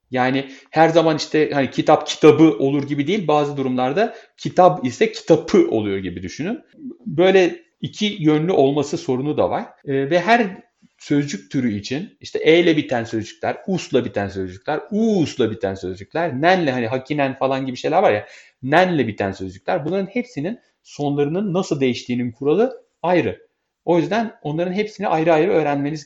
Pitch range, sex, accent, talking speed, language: 135-185 Hz, male, native, 150 wpm, Turkish